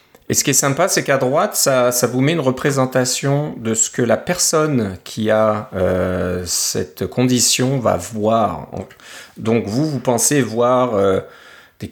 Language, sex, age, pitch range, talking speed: French, male, 30-49, 105-125 Hz, 165 wpm